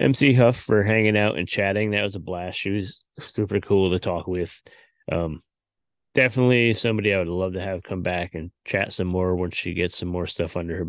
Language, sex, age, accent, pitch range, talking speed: English, male, 20-39, American, 90-105 Hz, 220 wpm